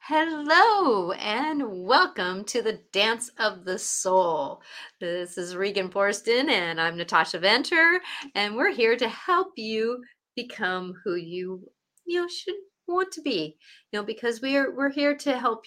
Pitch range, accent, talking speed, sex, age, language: 180-250 Hz, American, 155 wpm, female, 40-59, English